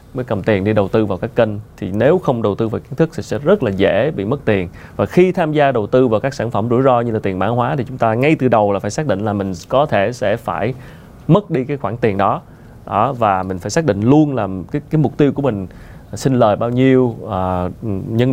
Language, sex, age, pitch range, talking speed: Vietnamese, male, 20-39, 105-135 Hz, 275 wpm